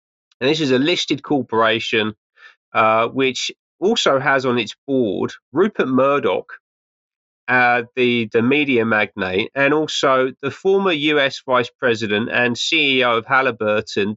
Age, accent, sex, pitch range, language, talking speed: 30-49, British, male, 110-140 Hz, English, 130 wpm